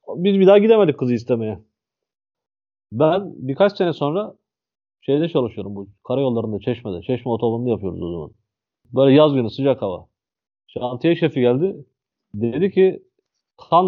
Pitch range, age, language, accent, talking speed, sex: 110-165 Hz, 30-49, Turkish, native, 135 wpm, male